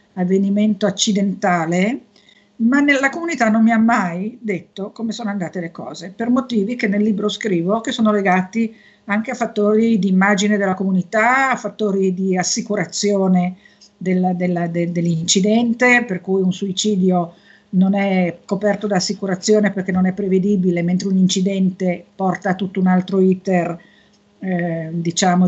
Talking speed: 140 wpm